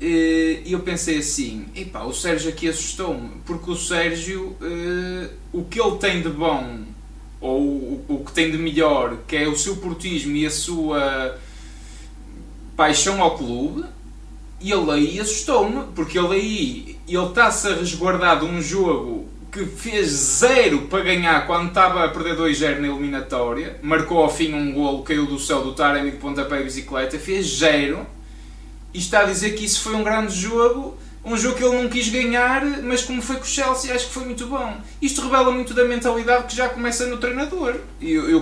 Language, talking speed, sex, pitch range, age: Portuguese, 185 wpm, male, 150-235 Hz, 20-39